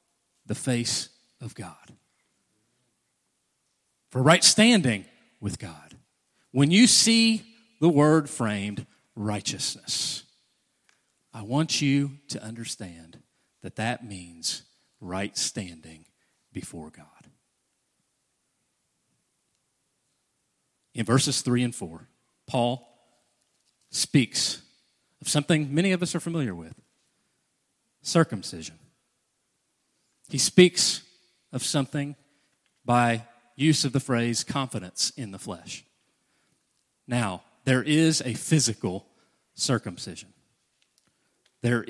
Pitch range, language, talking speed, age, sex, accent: 105-150 Hz, English, 90 wpm, 40-59, male, American